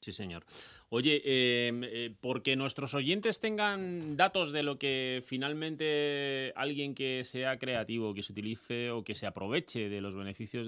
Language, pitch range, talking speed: Spanish, 110-135 Hz, 155 wpm